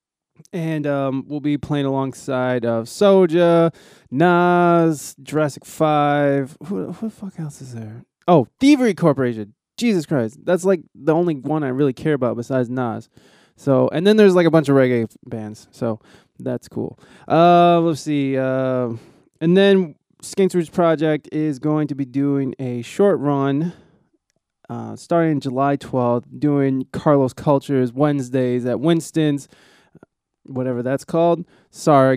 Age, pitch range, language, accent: 20-39, 125-165 Hz, English, American